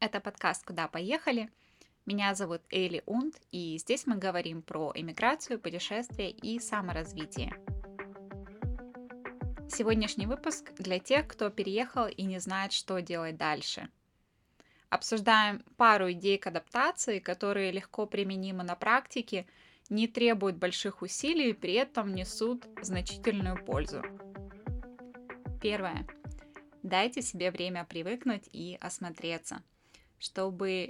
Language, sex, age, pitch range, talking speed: Russian, female, 10-29, 175-225 Hz, 110 wpm